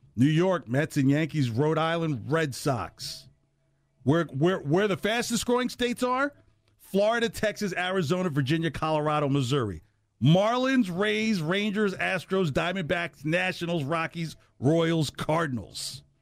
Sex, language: male, English